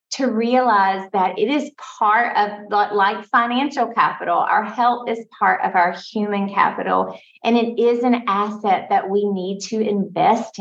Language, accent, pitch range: English, American, 185-240 Hz